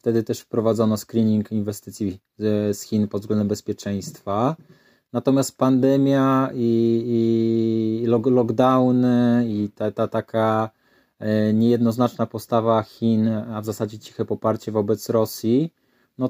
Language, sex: Polish, male